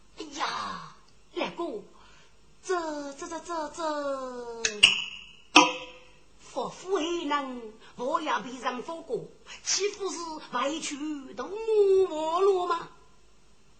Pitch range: 250-380 Hz